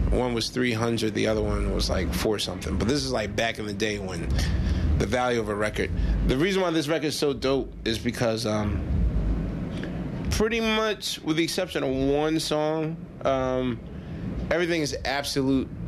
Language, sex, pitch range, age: English, male, 100-130 Hz, 30-49